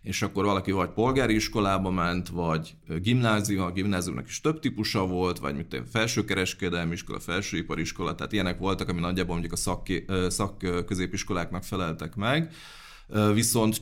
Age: 30-49